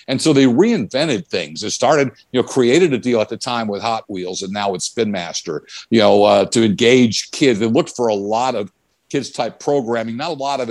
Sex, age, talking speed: male, 50-69, 230 wpm